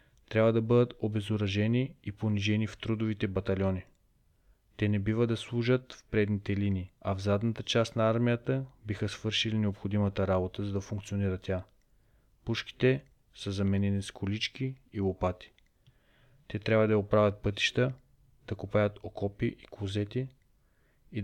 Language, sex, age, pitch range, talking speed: Bulgarian, male, 30-49, 100-120 Hz, 140 wpm